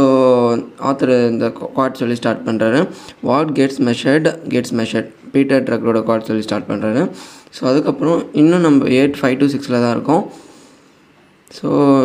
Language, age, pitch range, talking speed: Tamil, 20-39, 125-150 Hz, 145 wpm